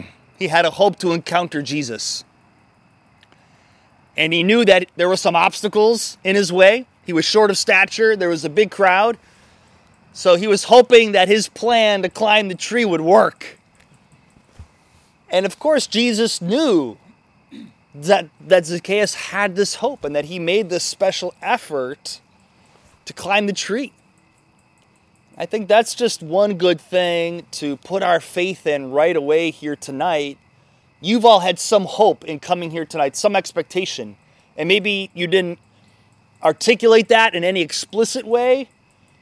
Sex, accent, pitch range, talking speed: male, American, 155-205 Hz, 155 wpm